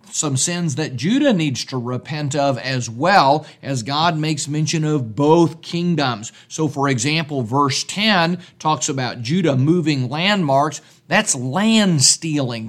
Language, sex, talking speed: English, male, 140 wpm